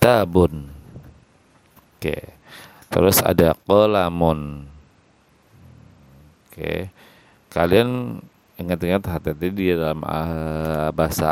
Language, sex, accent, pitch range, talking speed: Indonesian, male, native, 85-100 Hz, 75 wpm